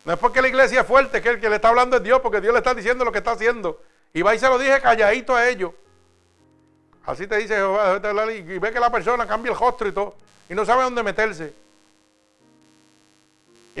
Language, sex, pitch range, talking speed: Spanish, male, 180-245 Hz, 230 wpm